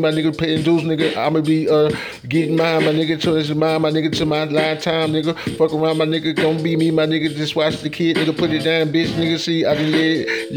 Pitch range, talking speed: 160-175 Hz, 260 wpm